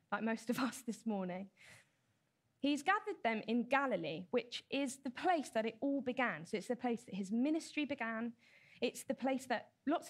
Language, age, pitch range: English, 20-39, 200-265 Hz